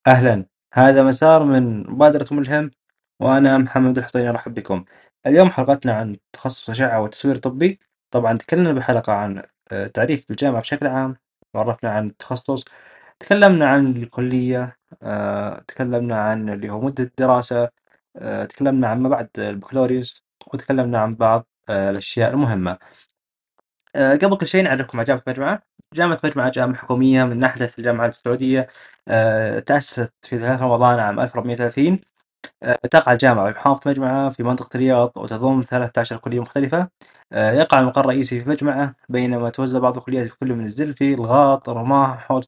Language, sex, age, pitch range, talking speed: Arabic, male, 20-39, 115-135 Hz, 140 wpm